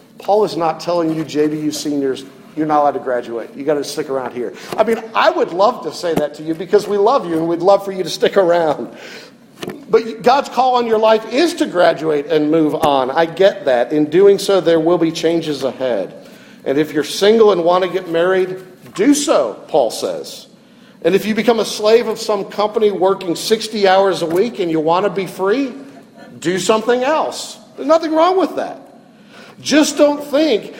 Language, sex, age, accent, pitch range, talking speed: English, male, 50-69, American, 160-235 Hz, 210 wpm